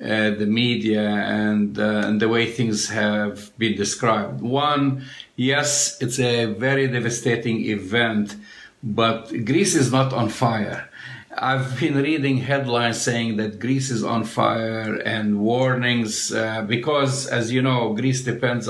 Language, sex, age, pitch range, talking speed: English, male, 50-69, 110-130 Hz, 140 wpm